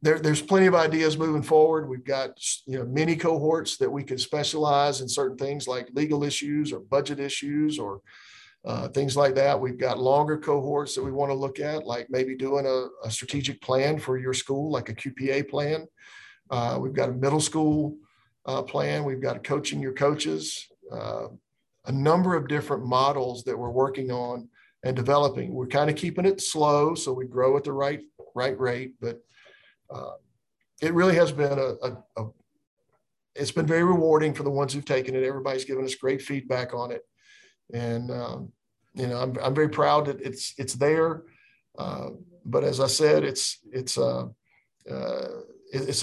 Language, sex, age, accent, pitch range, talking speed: English, male, 50-69, American, 130-155 Hz, 180 wpm